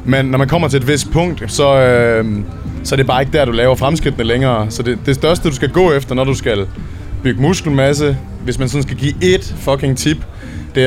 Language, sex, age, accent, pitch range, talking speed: Danish, male, 20-39, native, 115-145 Hz, 230 wpm